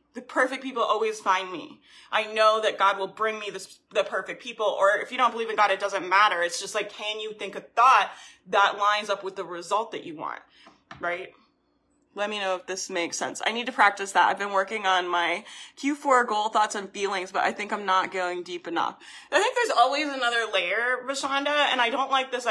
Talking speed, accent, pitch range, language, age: 230 wpm, American, 190-245 Hz, English, 20-39